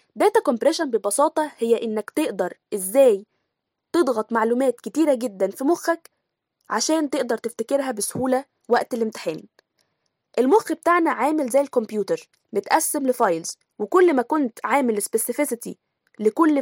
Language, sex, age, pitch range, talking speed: Arabic, female, 10-29, 225-300 Hz, 115 wpm